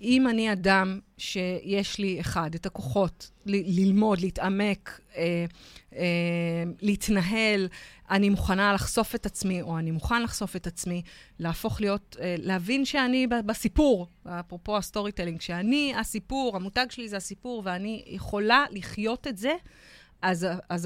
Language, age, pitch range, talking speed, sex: Hebrew, 30-49, 180-235 Hz, 135 wpm, female